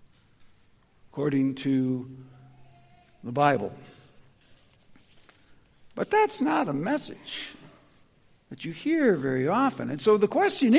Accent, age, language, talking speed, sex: American, 60-79, English, 100 wpm, male